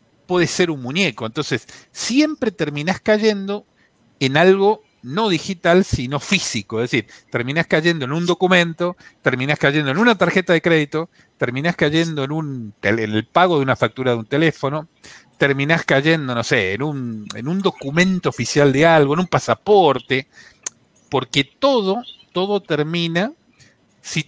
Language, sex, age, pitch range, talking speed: Spanish, male, 50-69, 135-195 Hz, 145 wpm